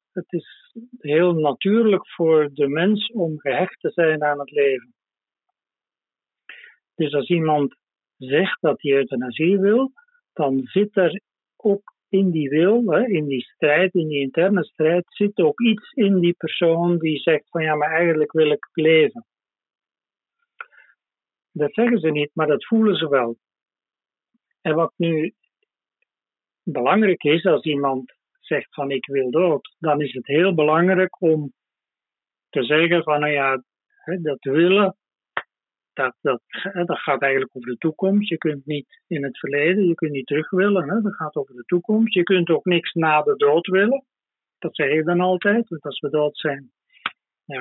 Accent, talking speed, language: Dutch, 160 wpm, Dutch